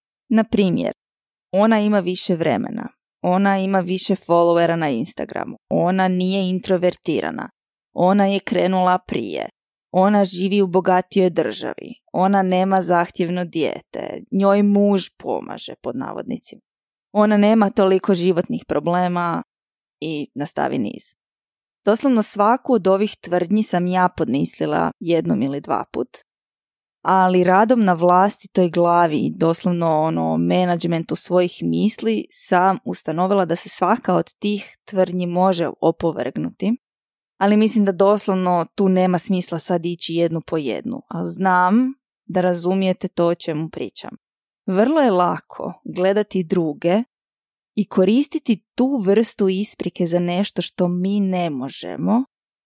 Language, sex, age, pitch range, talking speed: Croatian, female, 20-39, 175-205 Hz, 125 wpm